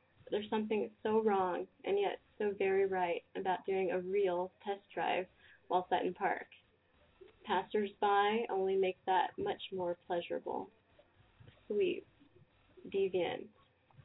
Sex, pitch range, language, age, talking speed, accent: female, 185-240 Hz, English, 20-39, 120 wpm, American